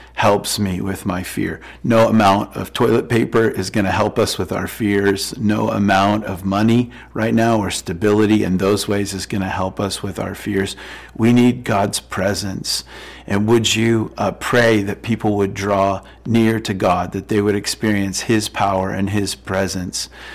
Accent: American